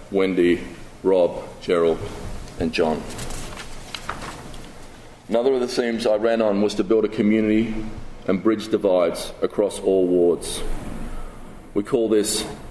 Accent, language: Australian, English